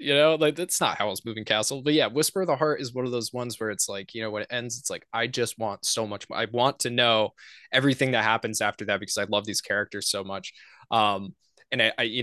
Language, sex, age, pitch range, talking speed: English, male, 20-39, 105-135 Hz, 275 wpm